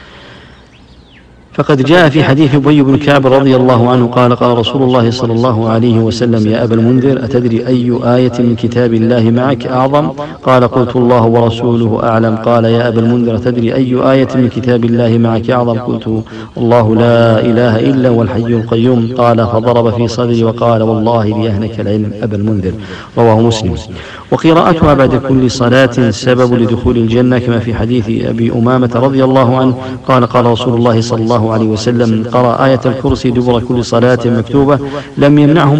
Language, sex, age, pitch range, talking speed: English, male, 50-69, 115-130 Hz, 160 wpm